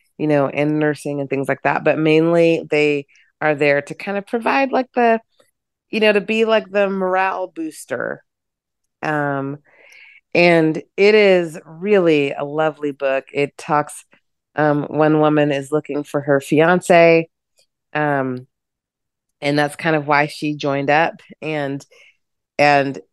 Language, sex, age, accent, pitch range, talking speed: English, female, 30-49, American, 150-205 Hz, 145 wpm